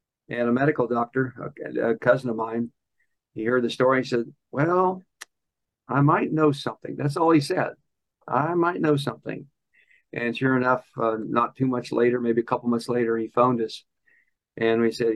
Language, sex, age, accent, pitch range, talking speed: English, male, 50-69, American, 115-145 Hz, 185 wpm